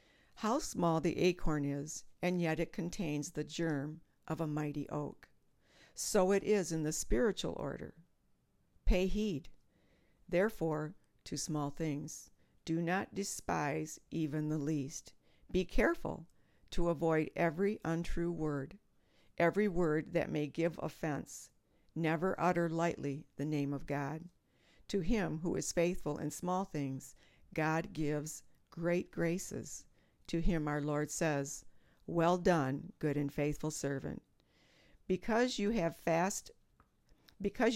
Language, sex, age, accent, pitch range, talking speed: English, female, 60-79, American, 150-180 Hz, 130 wpm